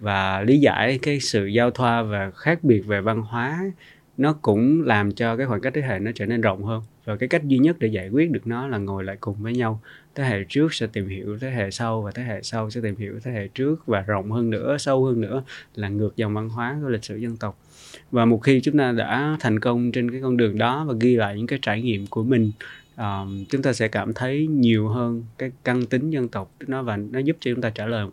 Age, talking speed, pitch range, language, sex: 20-39, 260 wpm, 110-130 Hz, Vietnamese, male